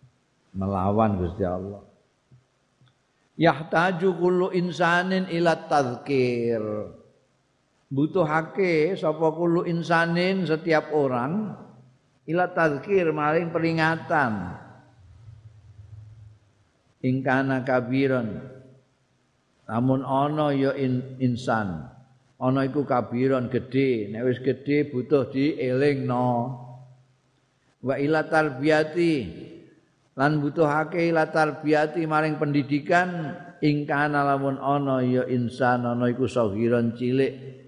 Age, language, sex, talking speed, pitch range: 50-69, Indonesian, male, 85 wpm, 125-155 Hz